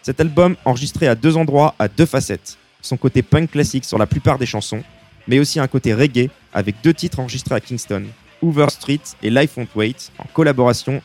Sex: male